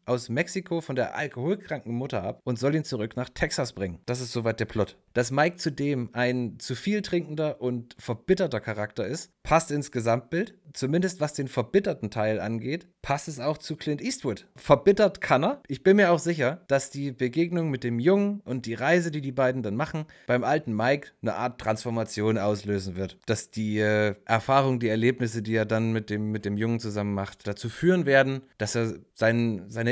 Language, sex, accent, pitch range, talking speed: German, male, German, 110-150 Hz, 195 wpm